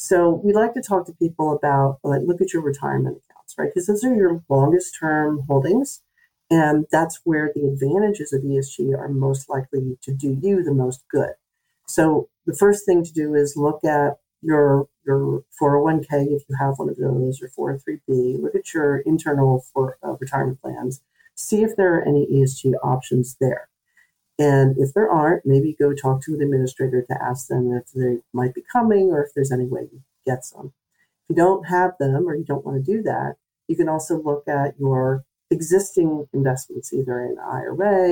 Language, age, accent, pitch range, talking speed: English, 50-69, American, 135-175 Hz, 190 wpm